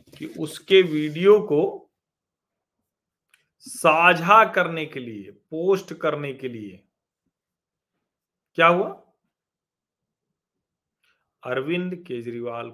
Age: 40-59